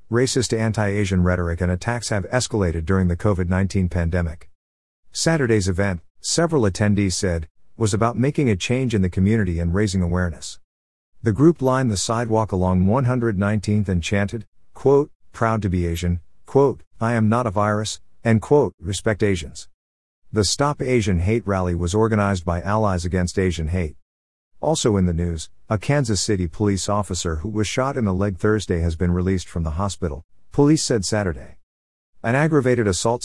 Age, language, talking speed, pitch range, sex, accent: 50-69, English, 165 wpm, 85-115 Hz, male, American